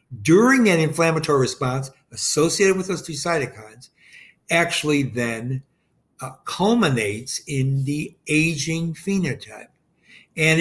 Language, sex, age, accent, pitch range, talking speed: English, male, 60-79, American, 130-160 Hz, 100 wpm